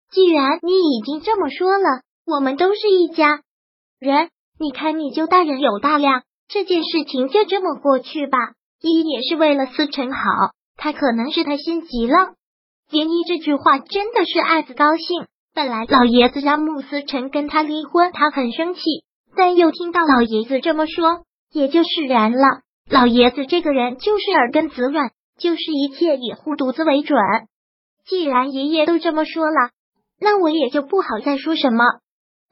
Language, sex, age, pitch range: Chinese, male, 20-39, 270-335 Hz